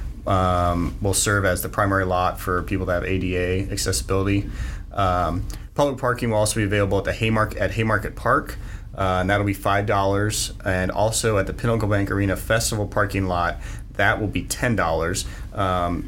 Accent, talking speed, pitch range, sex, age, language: American, 165 wpm, 90-100 Hz, male, 30-49, English